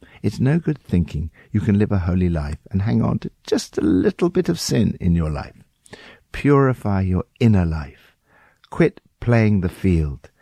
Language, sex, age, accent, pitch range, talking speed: English, male, 60-79, British, 90-135 Hz, 180 wpm